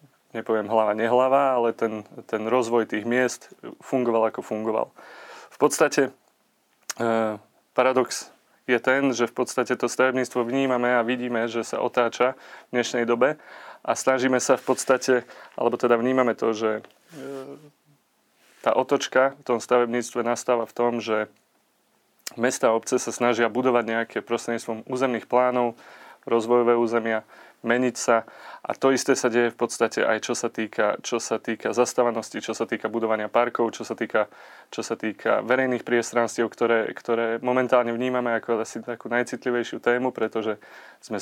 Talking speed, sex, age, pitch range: 150 wpm, male, 30-49, 115-125 Hz